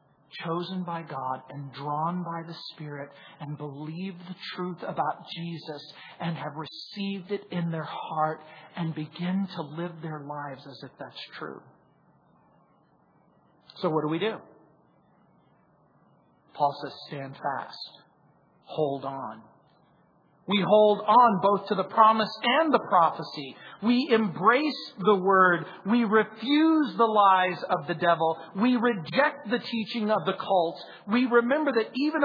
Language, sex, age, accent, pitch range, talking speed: English, male, 40-59, American, 160-240 Hz, 140 wpm